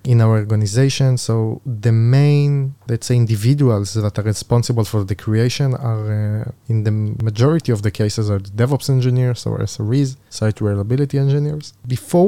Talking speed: 155 wpm